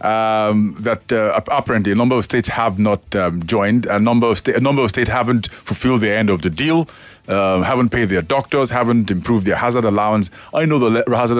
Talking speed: 220 wpm